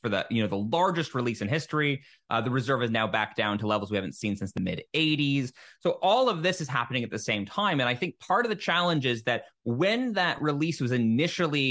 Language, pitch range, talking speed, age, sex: English, 115-165 Hz, 245 wpm, 30-49, male